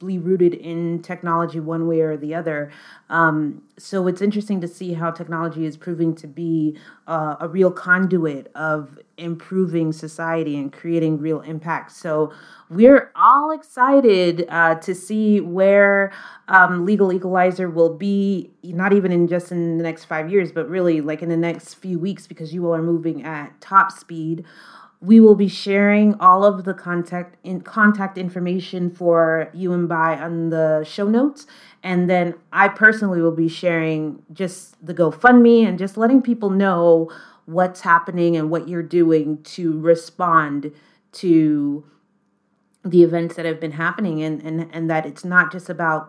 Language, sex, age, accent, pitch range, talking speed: English, female, 30-49, American, 160-185 Hz, 165 wpm